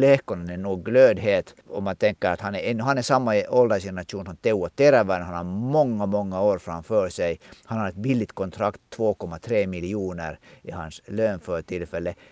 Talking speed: 165 wpm